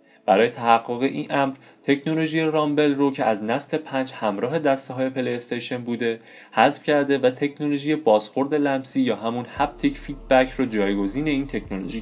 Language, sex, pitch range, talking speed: Persian, male, 110-145 Hz, 150 wpm